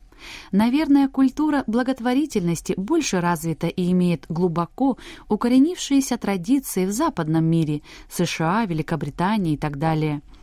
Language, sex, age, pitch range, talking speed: Russian, female, 20-39, 160-225 Hz, 105 wpm